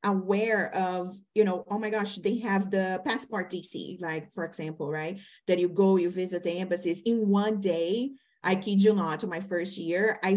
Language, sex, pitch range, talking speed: English, female, 180-220 Hz, 195 wpm